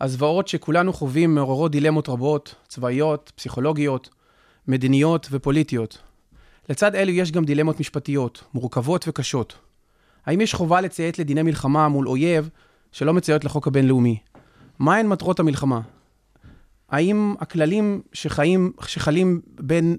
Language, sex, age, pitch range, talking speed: Hebrew, male, 30-49, 140-170 Hz, 115 wpm